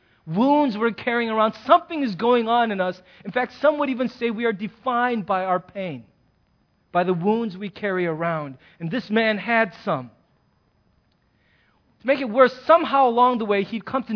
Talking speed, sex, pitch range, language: 185 wpm, male, 190-245 Hz, English